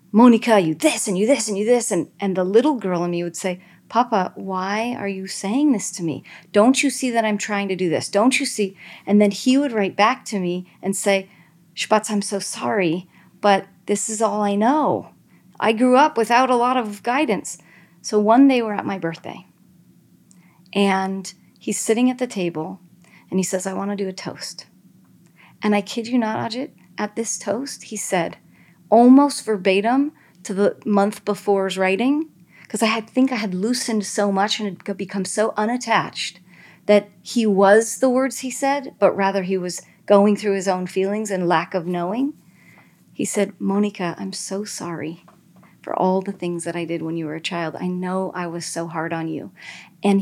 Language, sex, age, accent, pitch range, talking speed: English, female, 40-59, American, 185-220 Hz, 200 wpm